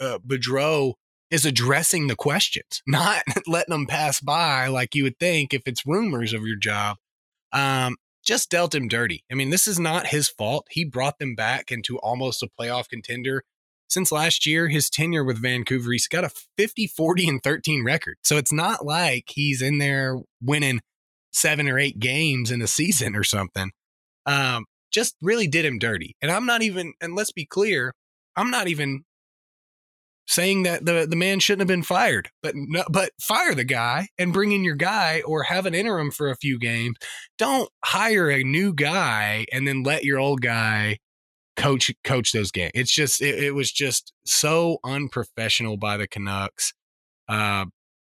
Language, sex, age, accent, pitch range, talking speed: English, male, 20-39, American, 120-165 Hz, 175 wpm